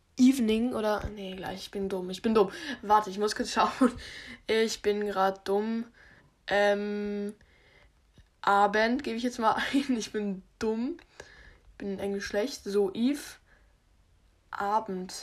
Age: 10-29